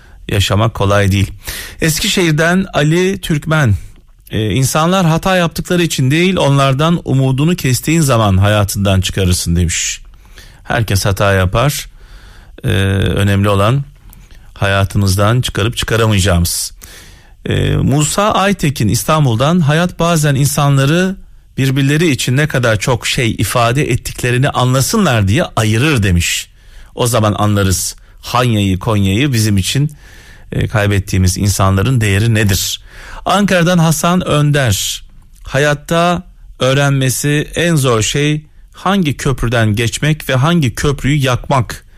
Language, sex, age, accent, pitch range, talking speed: Turkish, male, 40-59, native, 100-145 Hz, 105 wpm